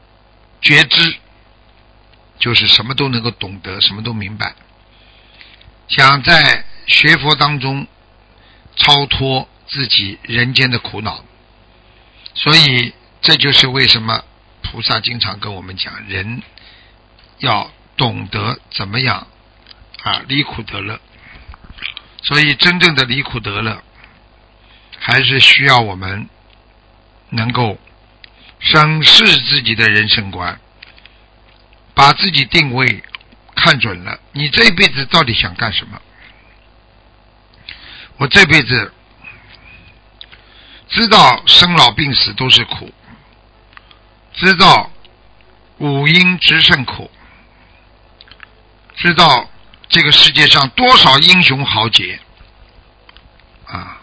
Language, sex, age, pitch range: Chinese, male, 60-79, 110-145 Hz